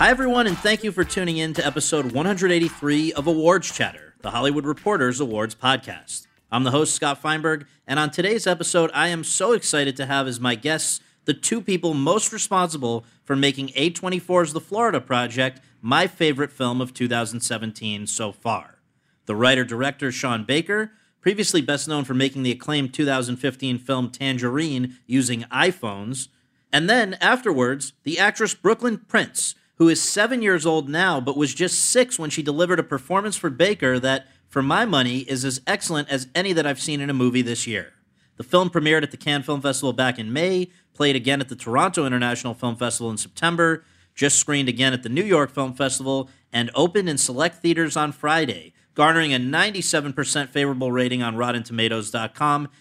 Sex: male